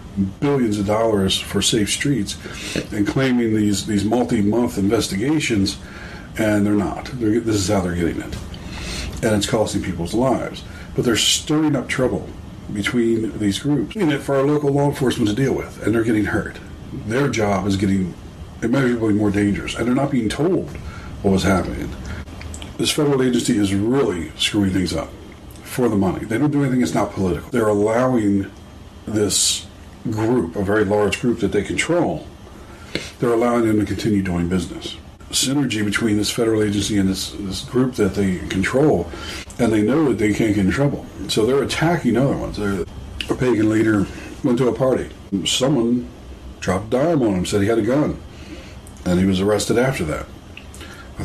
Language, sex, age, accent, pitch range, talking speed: English, male, 40-59, American, 95-115 Hz, 175 wpm